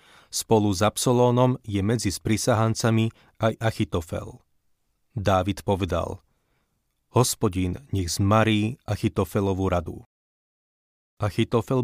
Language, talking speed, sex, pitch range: Slovak, 80 wpm, male, 95-110 Hz